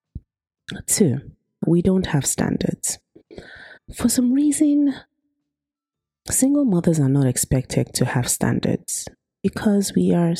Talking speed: 110 wpm